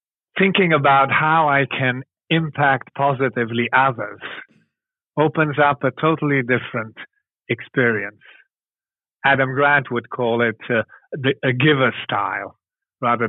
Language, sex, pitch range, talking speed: English, male, 115-145 Hz, 110 wpm